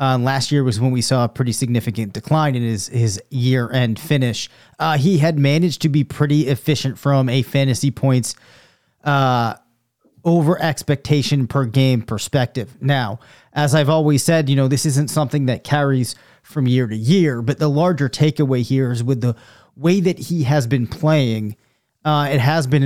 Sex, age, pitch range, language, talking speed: male, 30-49, 125-150 Hz, English, 180 wpm